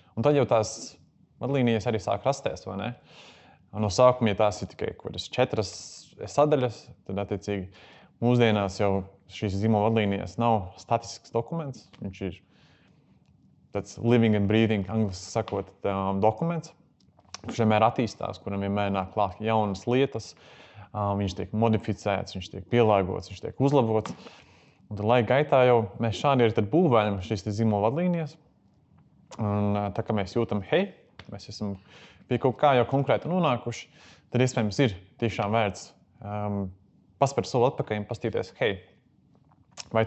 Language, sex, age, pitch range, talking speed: English, male, 20-39, 100-120 Hz, 140 wpm